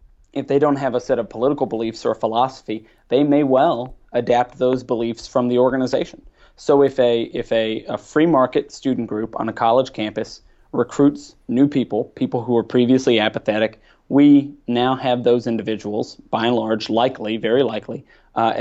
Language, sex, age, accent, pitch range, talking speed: English, male, 30-49, American, 115-135 Hz, 175 wpm